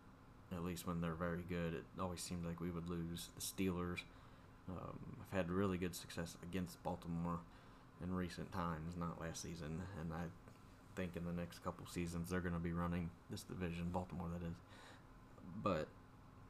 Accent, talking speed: American, 175 wpm